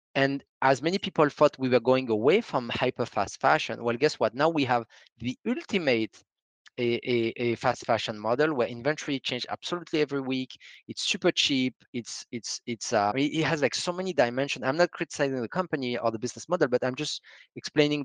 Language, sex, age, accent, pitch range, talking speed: English, male, 30-49, French, 115-140 Hz, 195 wpm